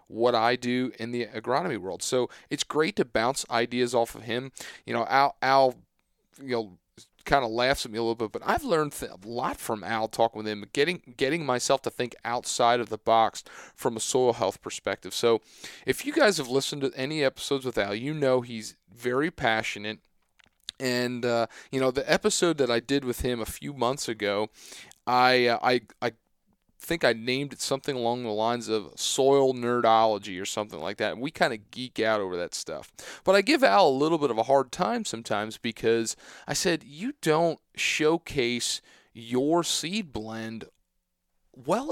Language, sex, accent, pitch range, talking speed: English, male, American, 115-140 Hz, 195 wpm